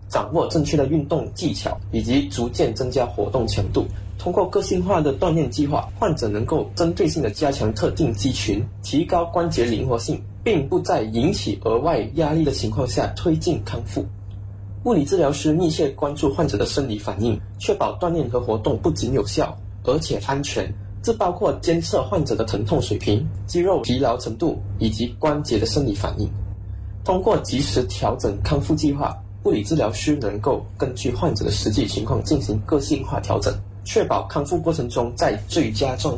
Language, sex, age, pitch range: Chinese, male, 20-39, 100-145 Hz